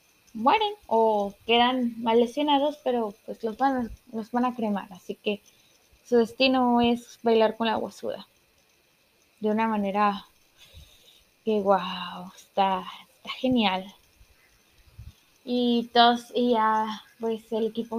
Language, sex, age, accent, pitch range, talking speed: Spanish, female, 10-29, Mexican, 225-285 Hz, 125 wpm